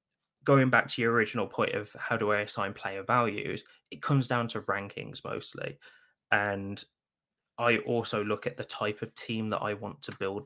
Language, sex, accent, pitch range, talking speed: English, male, British, 100-115 Hz, 190 wpm